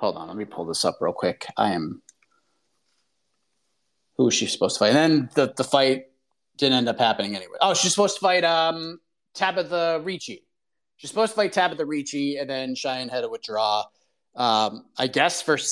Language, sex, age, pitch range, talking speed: English, male, 30-49, 130-170 Hz, 195 wpm